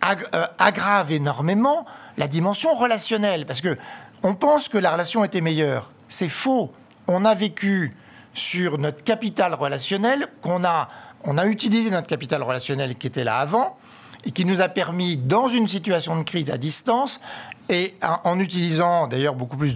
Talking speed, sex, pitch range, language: 160 wpm, male, 155-220 Hz, French